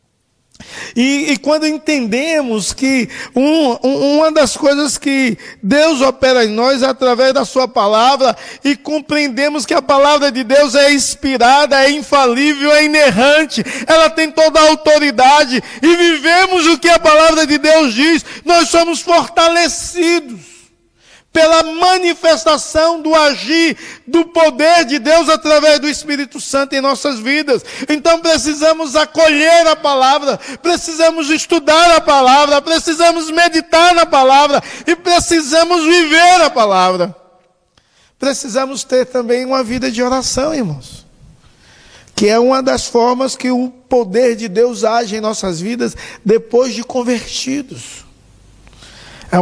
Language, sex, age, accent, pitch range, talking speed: Portuguese, male, 50-69, Brazilian, 255-320 Hz, 130 wpm